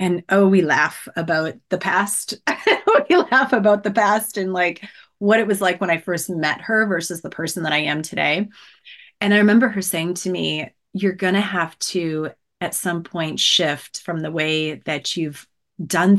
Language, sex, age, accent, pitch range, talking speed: English, female, 30-49, American, 170-220 Hz, 195 wpm